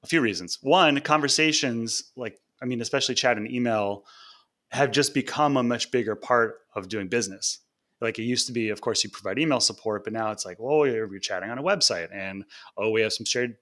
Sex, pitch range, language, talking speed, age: male, 105-130 Hz, English, 220 wpm, 30-49